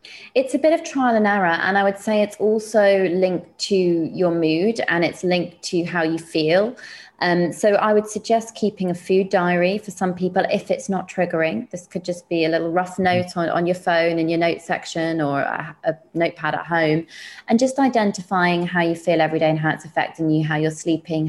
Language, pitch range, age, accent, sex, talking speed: English, 165-205 Hz, 20-39, British, female, 220 wpm